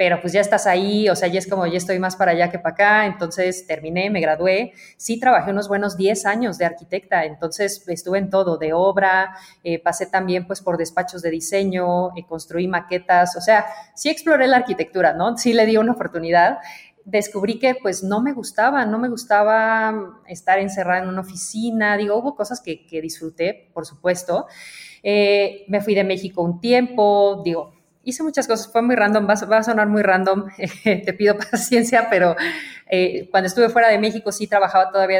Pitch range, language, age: 175-215 Hz, Spanish, 30-49